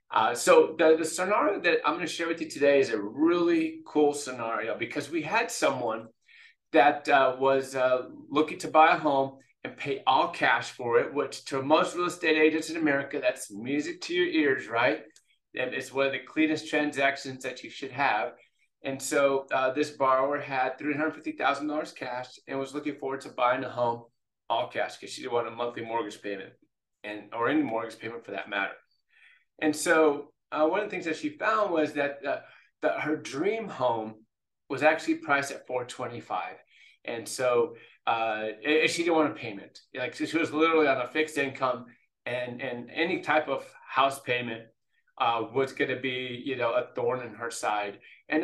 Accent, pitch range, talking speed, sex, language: American, 130-165 Hz, 195 wpm, male, English